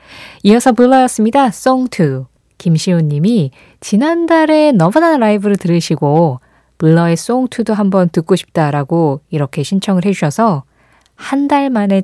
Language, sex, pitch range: Korean, female, 155-240 Hz